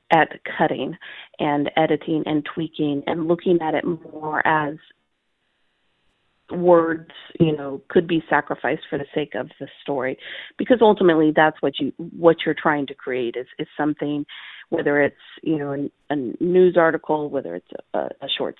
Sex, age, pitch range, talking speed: female, 30-49, 150-175 Hz, 160 wpm